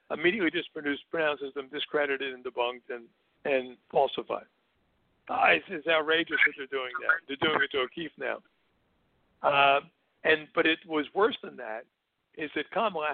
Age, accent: 60-79, American